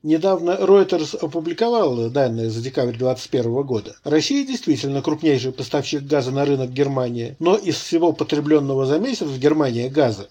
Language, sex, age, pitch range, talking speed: Russian, male, 50-69, 140-190 Hz, 145 wpm